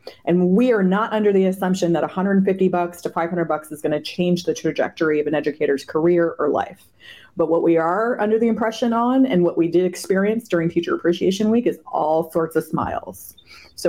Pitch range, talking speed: 160-205 Hz, 205 wpm